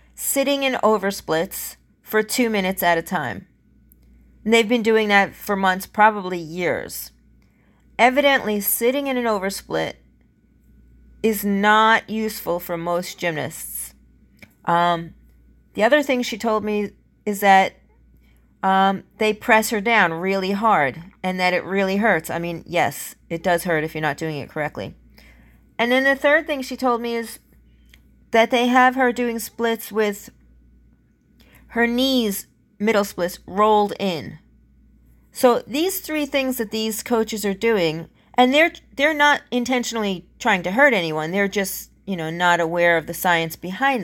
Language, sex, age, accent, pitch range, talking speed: English, female, 40-59, American, 170-235 Hz, 155 wpm